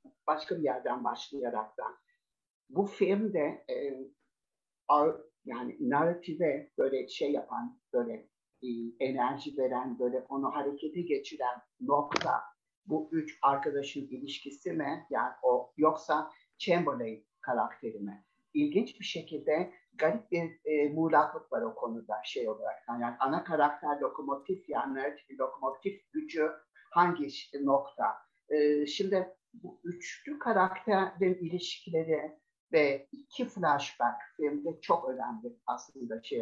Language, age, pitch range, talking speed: Turkish, 60-79, 135-195 Hz, 115 wpm